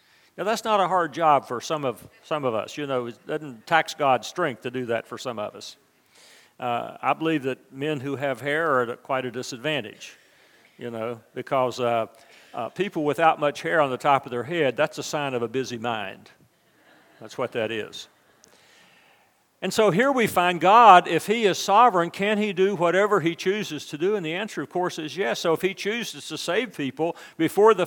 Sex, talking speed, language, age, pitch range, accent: male, 215 wpm, English, 50-69, 135-185 Hz, American